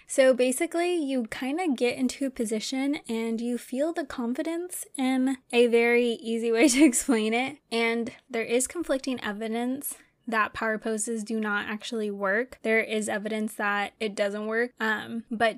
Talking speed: 165 wpm